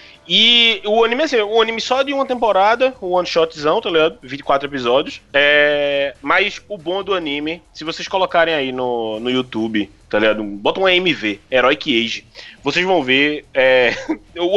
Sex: male